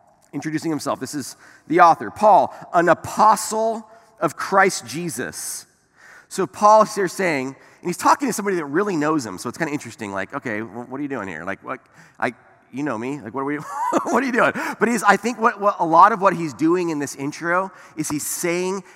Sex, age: male, 30-49